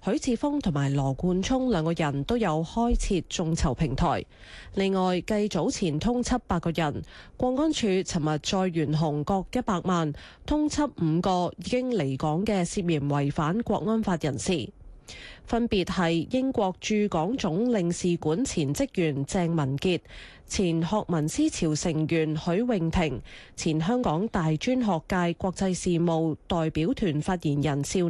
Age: 20-39